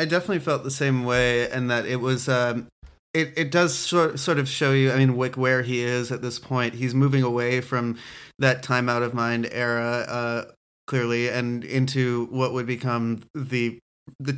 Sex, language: male, English